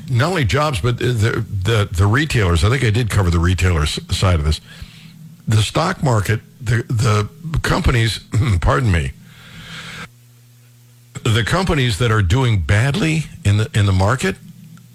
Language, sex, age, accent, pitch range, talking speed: English, male, 60-79, American, 105-145 Hz, 150 wpm